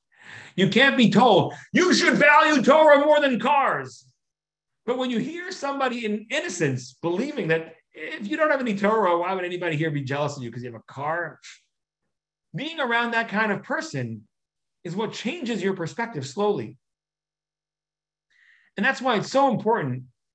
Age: 40-59